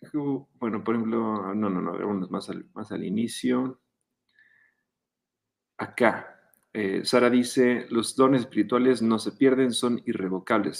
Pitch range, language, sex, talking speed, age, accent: 110-135 Hz, Spanish, male, 130 wpm, 40-59, Mexican